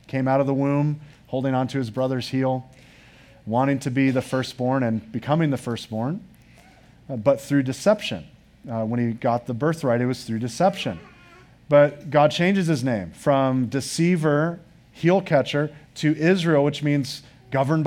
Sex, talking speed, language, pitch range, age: male, 160 wpm, English, 125-155 Hz, 40-59